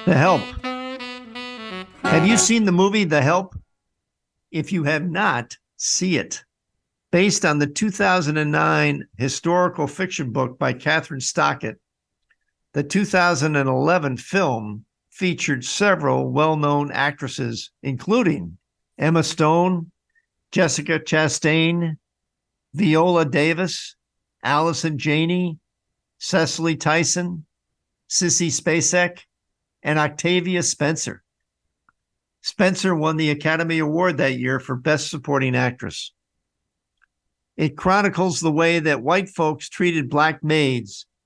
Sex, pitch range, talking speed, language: male, 145-175 Hz, 100 wpm, English